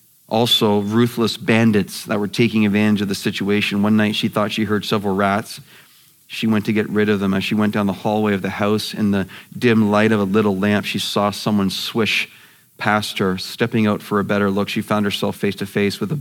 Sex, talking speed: male, 230 wpm